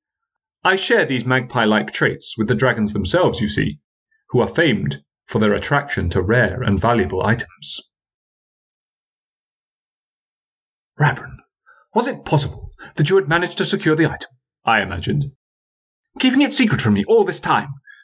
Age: 30-49